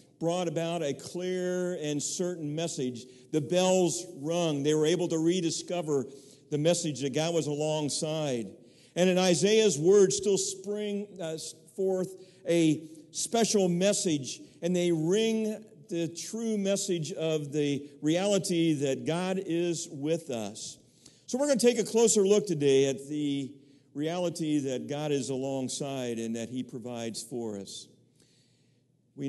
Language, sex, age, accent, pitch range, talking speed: English, male, 50-69, American, 135-175 Hz, 140 wpm